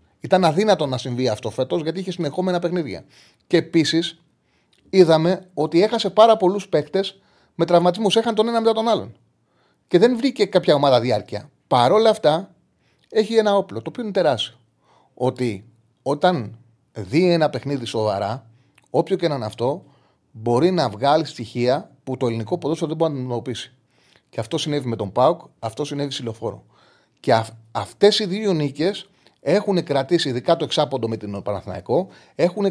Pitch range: 120-180 Hz